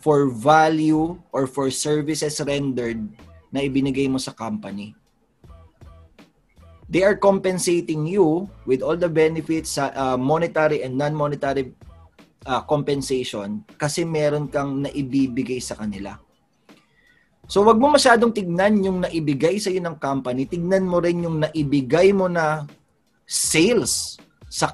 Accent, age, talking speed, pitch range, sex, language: Filipino, 20-39, 125 wpm, 135-180 Hz, male, English